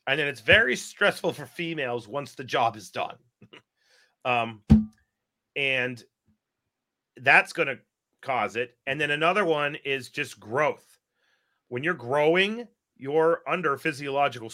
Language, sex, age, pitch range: English, male, 40-59, 115-155 Hz